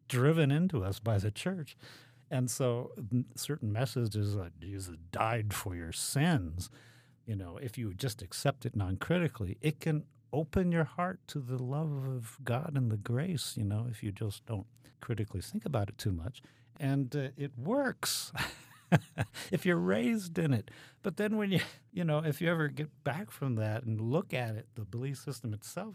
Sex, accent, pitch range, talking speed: male, American, 110-140 Hz, 185 wpm